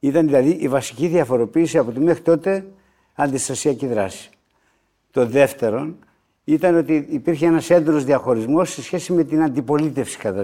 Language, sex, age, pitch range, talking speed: Greek, male, 60-79, 130-180 Hz, 145 wpm